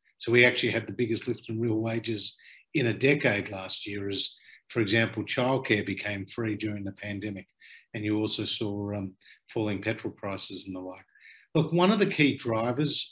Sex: male